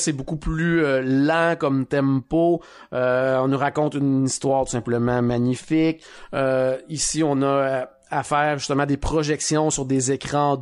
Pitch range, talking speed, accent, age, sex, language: 130-155 Hz, 155 wpm, Canadian, 30-49, male, French